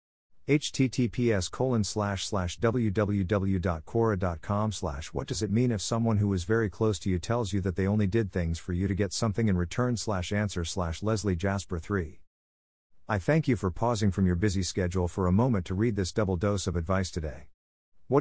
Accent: American